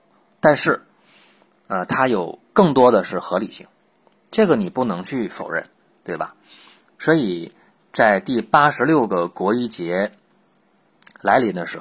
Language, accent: Chinese, native